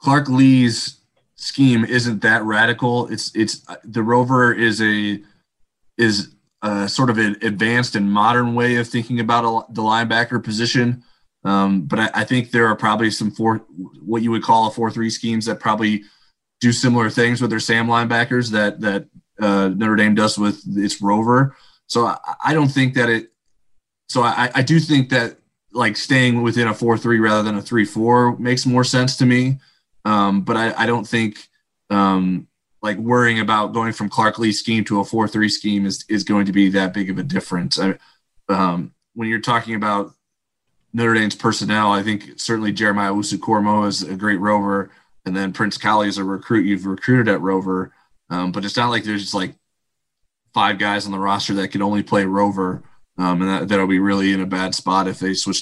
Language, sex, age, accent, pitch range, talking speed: English, male, 20-39, American, 100-120 Hz, 195 wpm